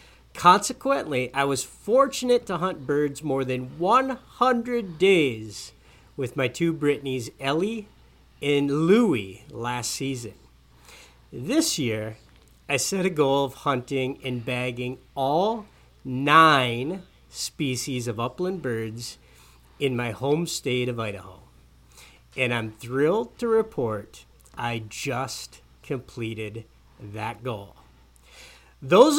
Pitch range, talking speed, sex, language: 115-170 Hz, 110 wpm, male, English